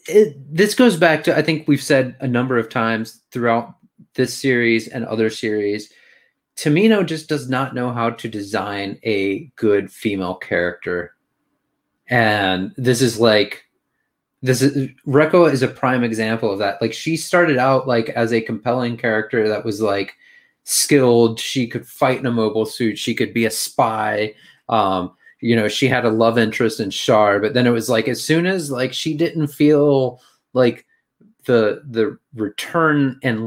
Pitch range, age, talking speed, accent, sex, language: 110-145 Hz, 30-49, 170 wpm, American, male, English